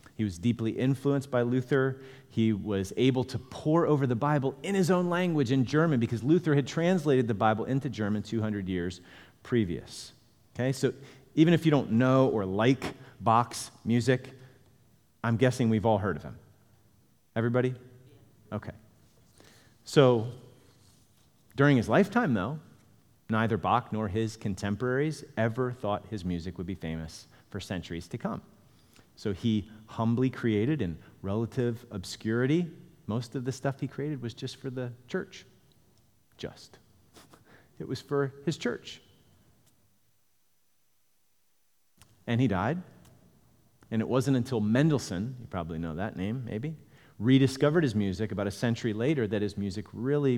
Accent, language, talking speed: American, English, 145 wpm